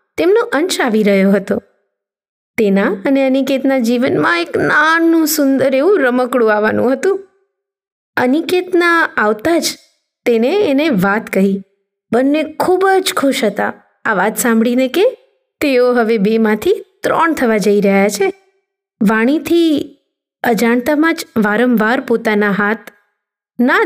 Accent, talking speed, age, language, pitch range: native, 120 wpm, 20-39, Gujarati, 210-295 Hz